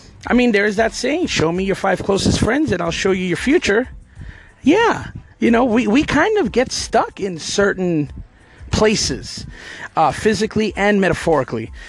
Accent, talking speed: American, 170 wpm